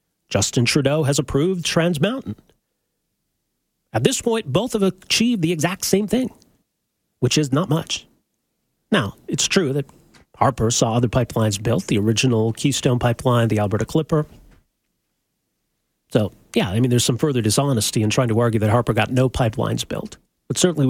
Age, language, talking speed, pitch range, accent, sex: 40-59, English, 160 wpm, 120-160 Hz, American, male